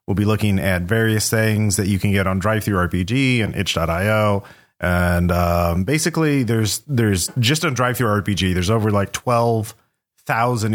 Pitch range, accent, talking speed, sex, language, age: 95-115 Hz, American, 155 wpm, male, English, 30-49